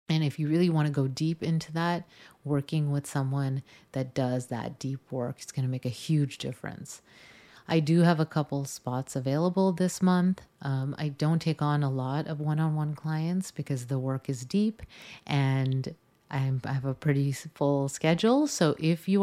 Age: 30-49